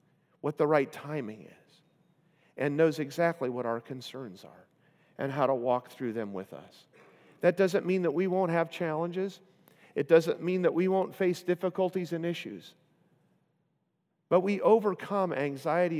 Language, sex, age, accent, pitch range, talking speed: English, male, 50-69, American, 140-185 Hz, 160 wpm